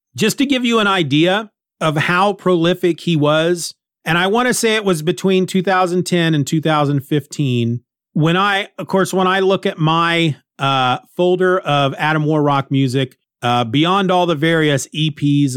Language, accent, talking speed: English, American, 165 wpm